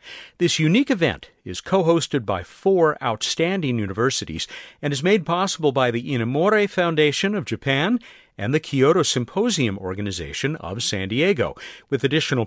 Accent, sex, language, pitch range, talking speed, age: American, male, English, 110-165 Hz, 145 wpm, 50-69